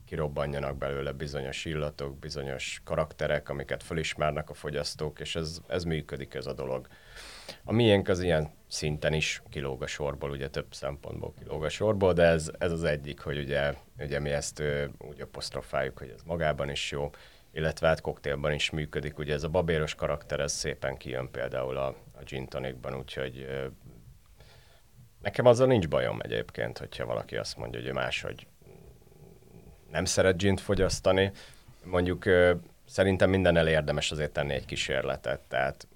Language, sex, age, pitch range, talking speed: Hungarian, male, 30-49, 70-85 Hz, 155 wpm